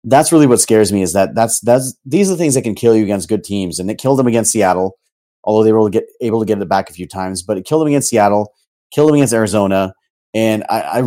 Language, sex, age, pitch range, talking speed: English, male, 30-49, 105-130 Hz, 285 wpm